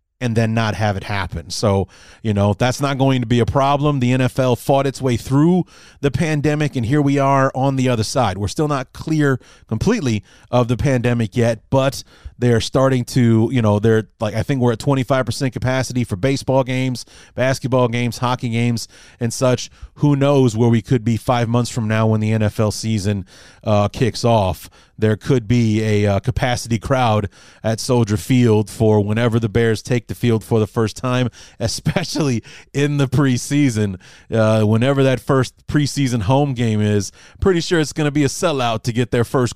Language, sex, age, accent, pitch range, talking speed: English, male, 30-49, American, 110-140 Hz, 190 wpm